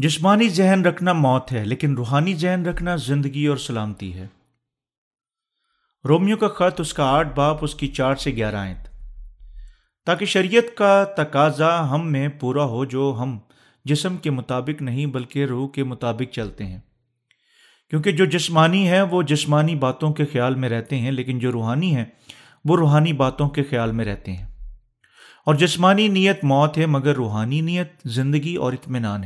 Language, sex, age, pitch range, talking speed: Urdu, male, 40-59, 125-165 Hz, 165 wpm